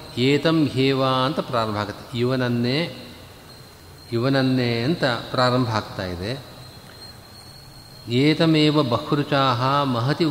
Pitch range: 110-140 Hz